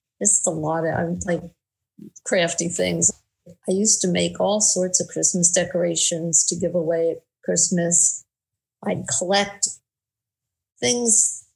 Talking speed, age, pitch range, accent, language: 125 wpm, 50-69, 165-190 Hz, American, English